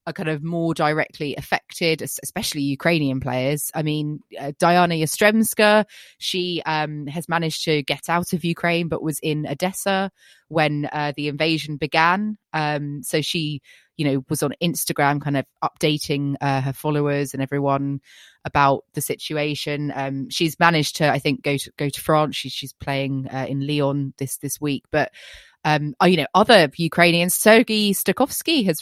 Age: 20-39